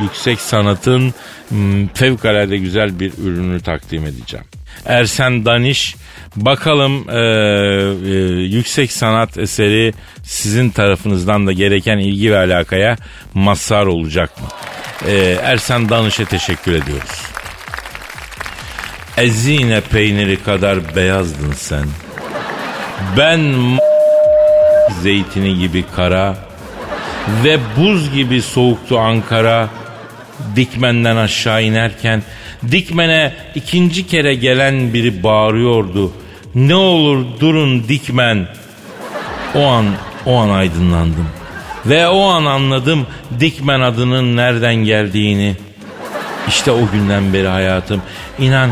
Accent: native